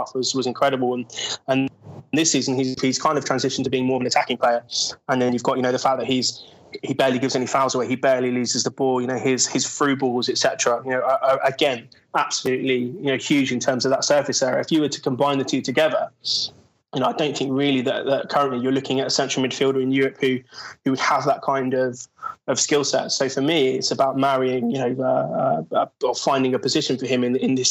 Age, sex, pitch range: 20-39, male, 125-135 Hz